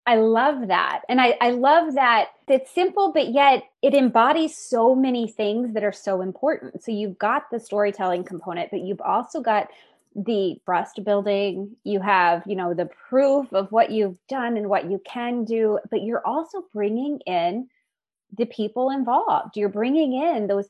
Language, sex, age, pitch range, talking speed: English, female, 20-39, 185-230 Hz, 175 wpm